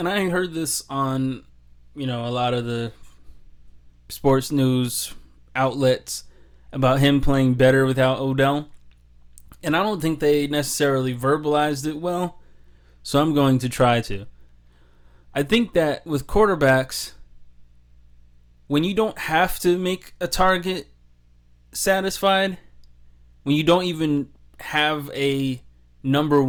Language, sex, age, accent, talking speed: English, male, 20-39, American, 125 wpm